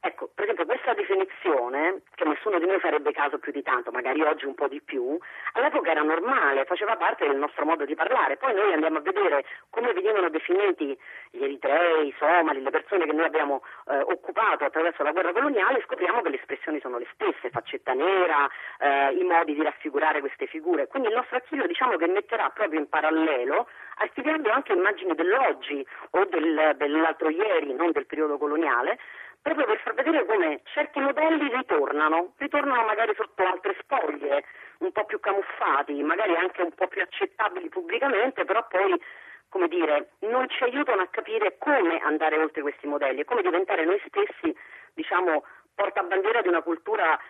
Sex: female